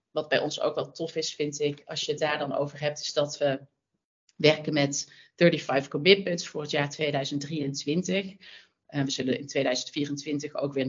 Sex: female